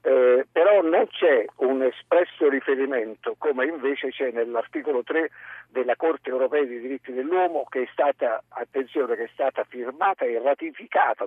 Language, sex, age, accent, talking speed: Italian, male, 50-69, native, 150 wpm